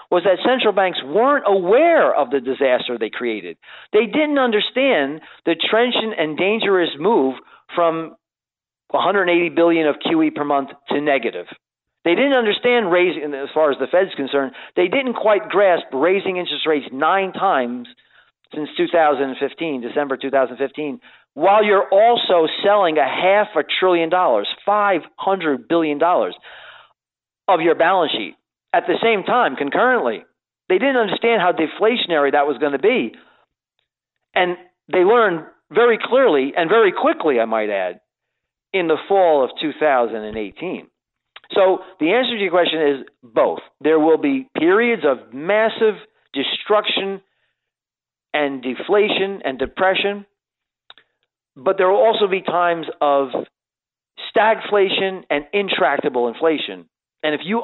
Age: 40-59